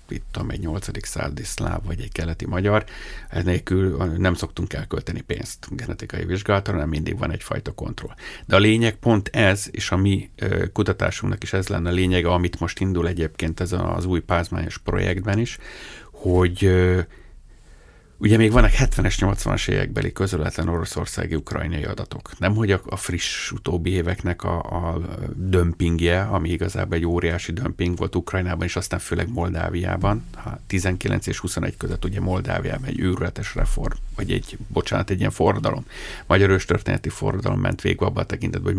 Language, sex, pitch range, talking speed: Hungarian, male, 90-110 Hz, 150 wpm